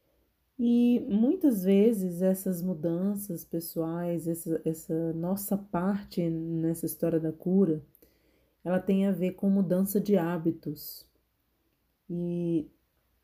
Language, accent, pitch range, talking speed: Portuguese, Brazilian, 165-195 Hz, 105 wpm